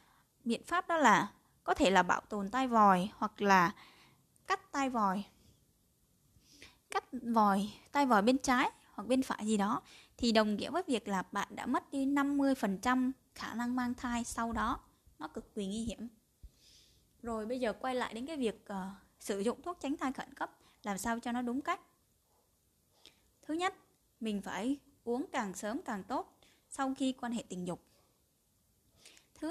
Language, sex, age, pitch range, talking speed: Vietnamese, female, 10-29, 205-280 Hz, 175 wpm